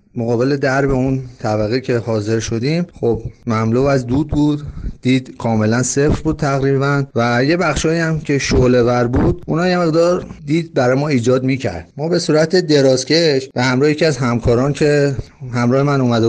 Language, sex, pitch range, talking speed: Persian, male, 120-145 Hz, 175 wpm